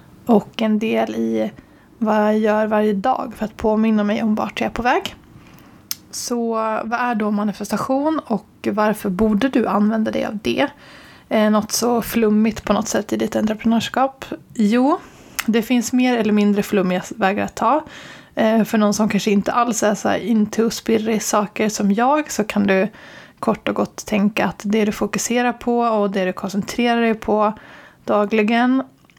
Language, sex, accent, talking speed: Swedish, female, native, 175 wpm